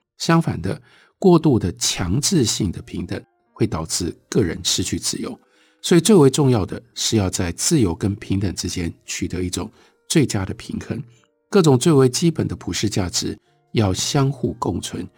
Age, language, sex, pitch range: 60-79, Chinese, male, 95-130 Hz